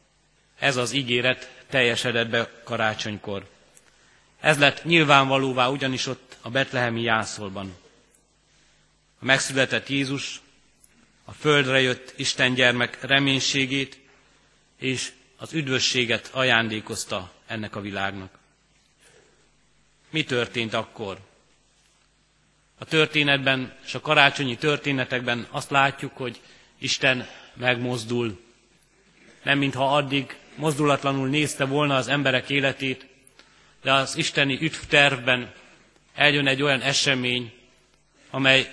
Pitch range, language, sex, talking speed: 120-140 Hz, Hungarian, male, 95 wpm